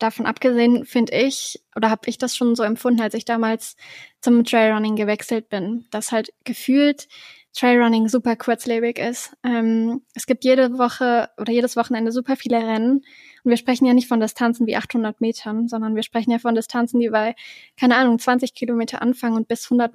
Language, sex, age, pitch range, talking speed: German, female, 10-29, 230-255 Hz, 185 wpm